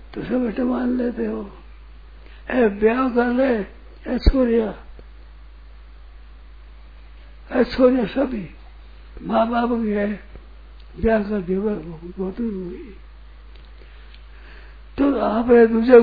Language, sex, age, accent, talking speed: Hindi, male, 60-79, native, 60 wpm